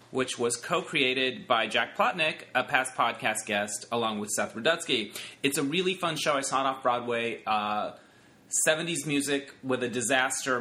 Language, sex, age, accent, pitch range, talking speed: English, male, 30-49, American, 120-150 Hz, 160 wpm